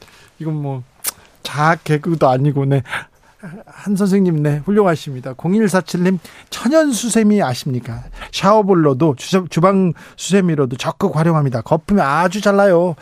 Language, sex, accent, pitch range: Korean, male, native, 135-180 Hz